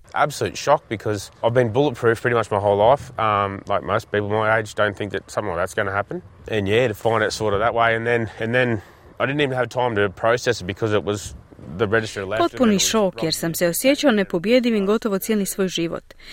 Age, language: 30-49, Croatian